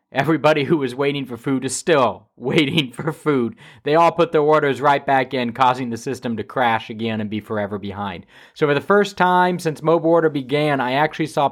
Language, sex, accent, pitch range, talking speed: English, male, American, 110-150 Hz, 215 wpm